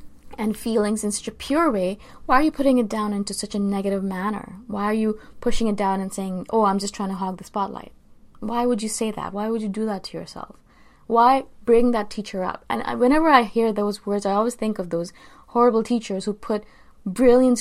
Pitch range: 195-230 Hz